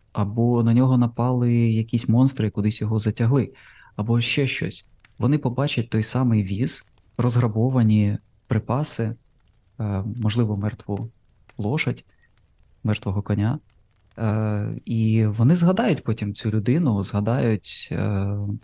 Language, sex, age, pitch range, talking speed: Ukrainian, male, 20-39, 105-120 Hz, 105 wpm